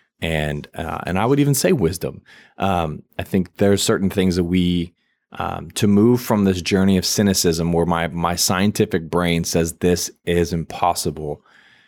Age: 20-39